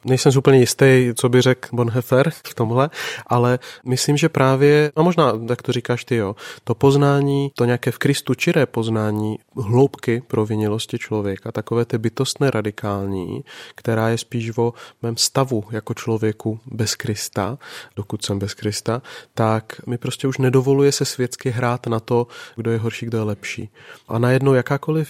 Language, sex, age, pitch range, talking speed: Czech, male, 30-49, 110-130 Hz, 165 wpm